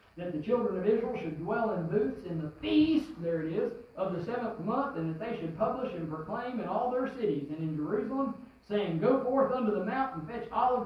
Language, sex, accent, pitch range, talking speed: English, male, American, 170-250 Hz, 225 wpm